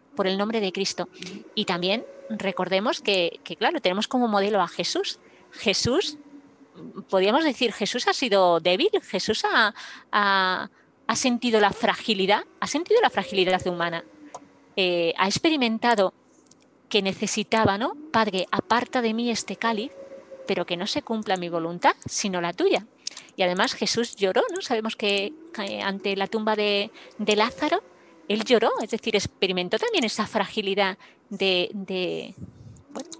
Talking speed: 150 wpm